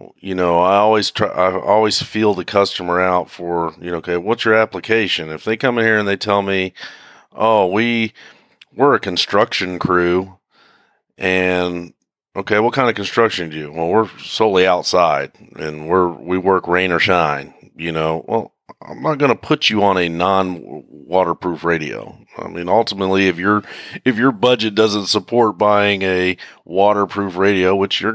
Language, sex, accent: English, male, American